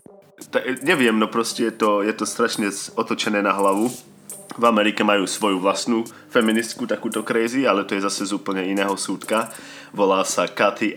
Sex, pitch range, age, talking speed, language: male, 95-105 Hz, 30-49, 170 wpm, Slovak